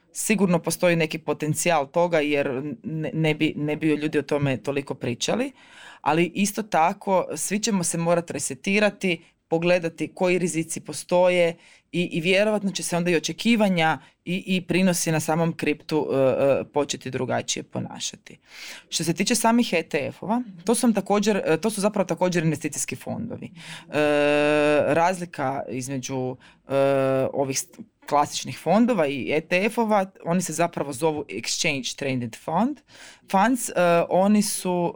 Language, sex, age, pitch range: Croatian, female, 20-39, 140-185 Hz